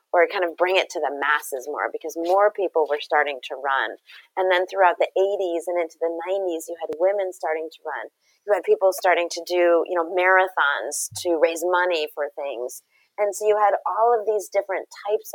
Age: 30-49